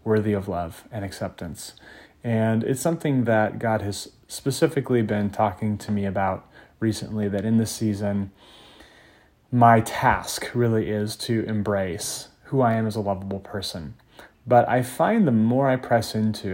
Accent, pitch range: American, 100-120 Hz